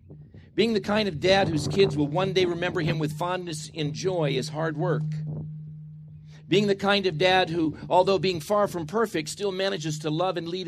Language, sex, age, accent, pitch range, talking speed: English, male, 50-69, American, 135-180 Hz, 200 wpm